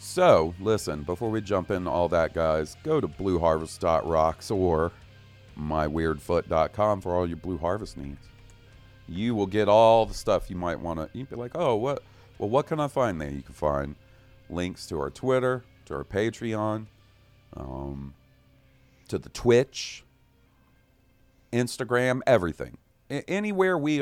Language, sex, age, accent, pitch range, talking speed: English, male, 40-59, American, 90-120 Hz, 145 wpm